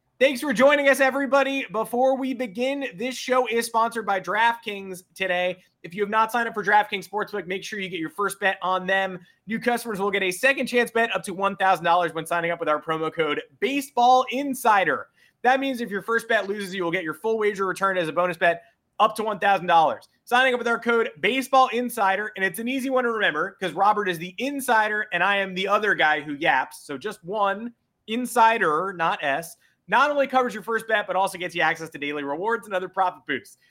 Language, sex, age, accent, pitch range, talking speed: English, male, 20-39, American, 190-245 Hz, 220 wpm